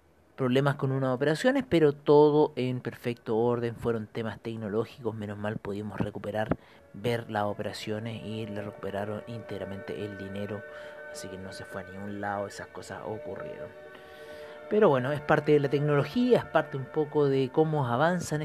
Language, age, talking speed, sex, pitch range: Spanish, 40-59, 165 wpm, male, 105-140 Hz